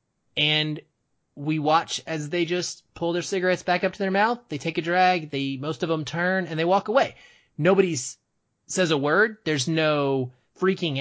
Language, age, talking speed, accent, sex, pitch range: English, 30-49, 185 wpm, American, male, 130-170 Hz